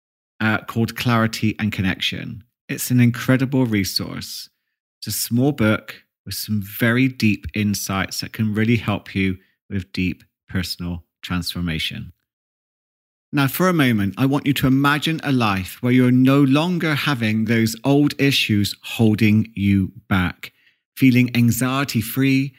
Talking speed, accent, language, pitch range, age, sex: 135 wpm, British, English, 100-135 Hz, 30-49, male